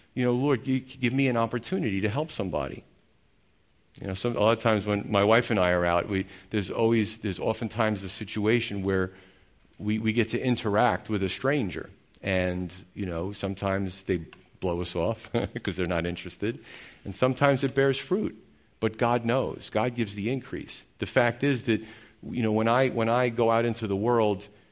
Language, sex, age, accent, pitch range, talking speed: English, male, 50-69, American, 95-115 Hz, 195 wpm